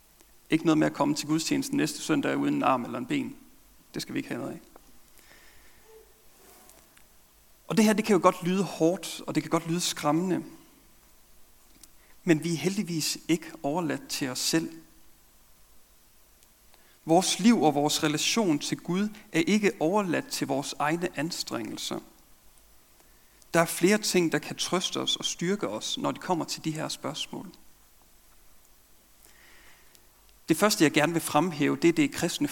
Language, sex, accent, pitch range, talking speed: Danish, male, native, 150-210 Hz, 160 wpm